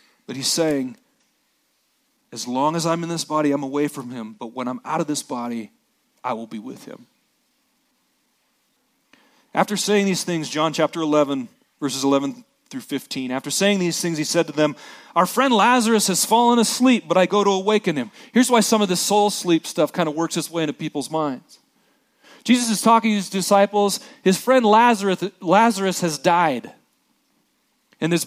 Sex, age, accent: male, 40-59, American